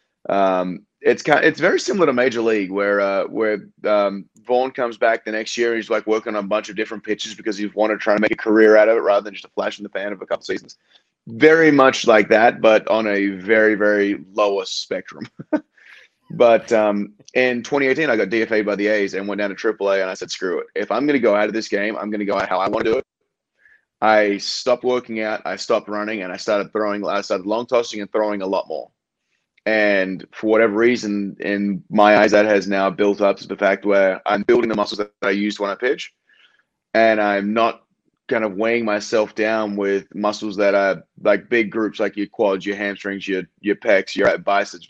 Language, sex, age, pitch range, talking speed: English, male, 30-49, 100-110 Hz, 235 wpm